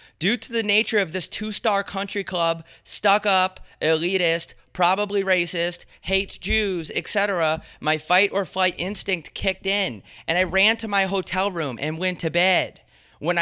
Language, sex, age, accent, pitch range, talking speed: English, male, 30-49, American, 175-205 Hz, 150 wpm